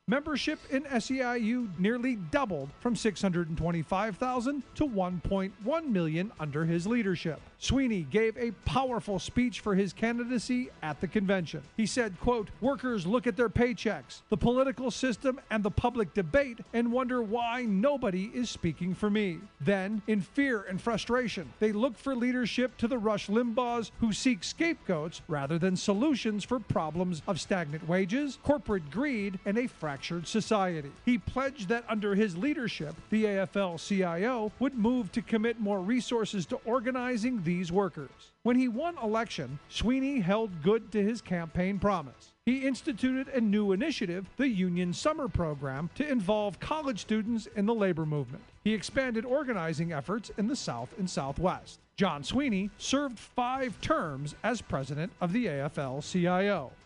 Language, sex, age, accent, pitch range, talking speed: English, male, 40-59, American, 185-245 Hz, 150 wpm